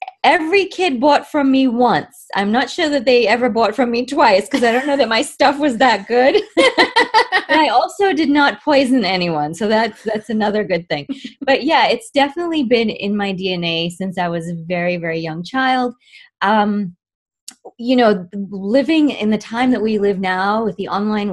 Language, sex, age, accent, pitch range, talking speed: English, female, 20-39, American, 180-255 Hz, 190 wpm